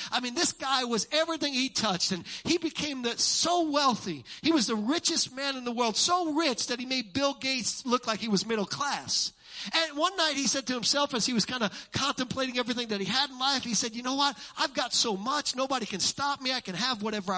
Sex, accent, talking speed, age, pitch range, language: male, American, 240 wpm, 50-69, 195-300 Hz, English